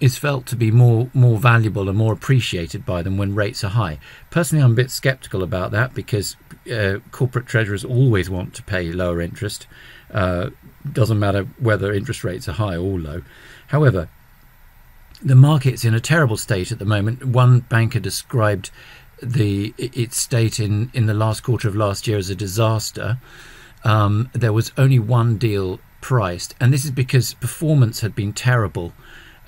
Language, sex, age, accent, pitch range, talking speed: English, male, 50-69, British, 100-125 Hz, 175 wpm